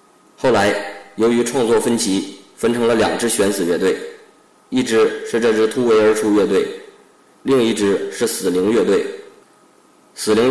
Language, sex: Chinese, male